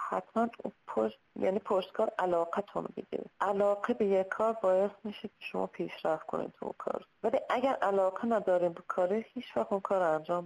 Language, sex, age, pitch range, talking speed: Persian, female, 30-49, 175-220 Hz, 180 wpm